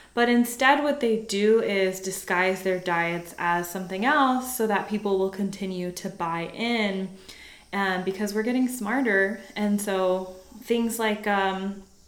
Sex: female